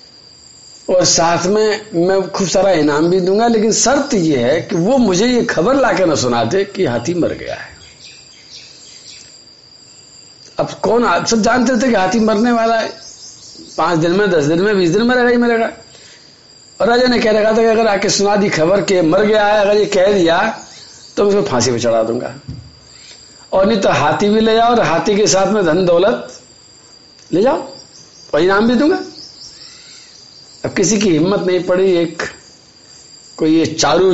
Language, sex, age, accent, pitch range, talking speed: Hindi, male, 50-69, native, 165-220 Hz, 180 wpm